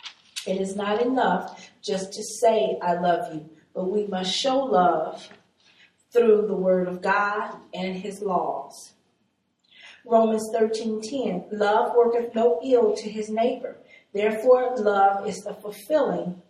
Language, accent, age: English, American, 40-59